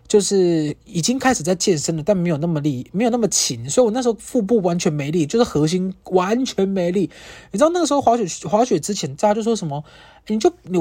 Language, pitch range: Chinese, 160-230 Hz